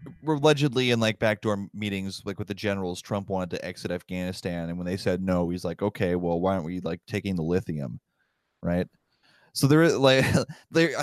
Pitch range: 85-115 Hz